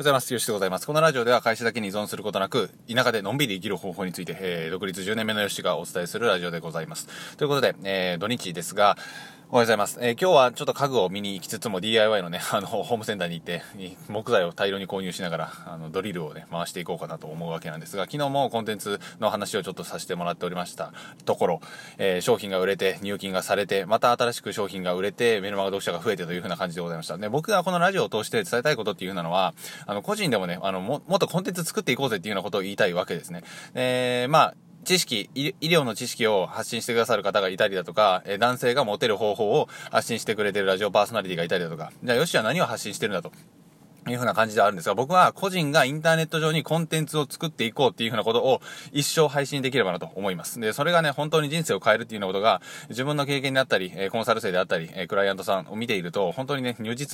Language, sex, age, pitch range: Japanese, male, 20-39, 95-145 Hz